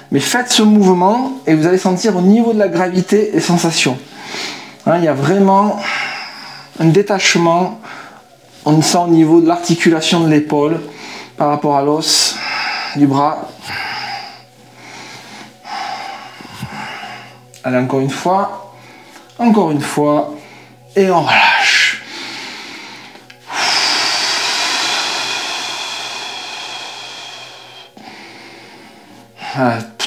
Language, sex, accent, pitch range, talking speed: French, male, French, 150-195 Hz, 95 wpm